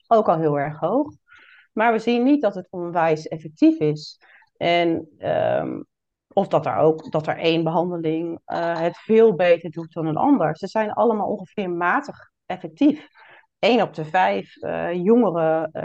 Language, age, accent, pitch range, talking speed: Dutch, 40-59, Dutch, 170-225 Hz, 165 wpm